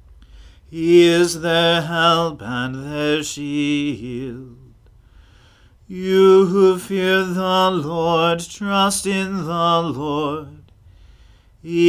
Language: English